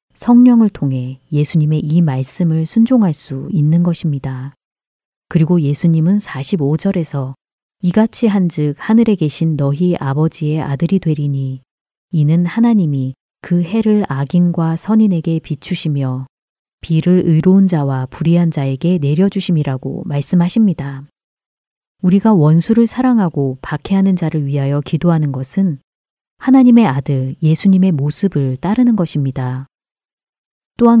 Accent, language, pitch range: native, Korean, 145-190 Hz